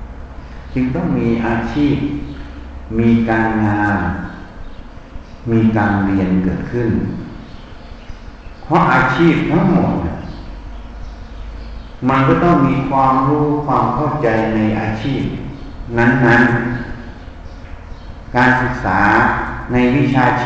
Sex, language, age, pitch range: male, Thai, 60-79, 90-130 Hz